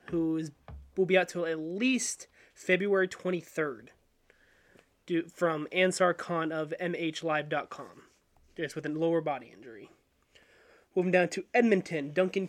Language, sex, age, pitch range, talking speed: English, male, 20-39, 155-185 Hz, 125 wpm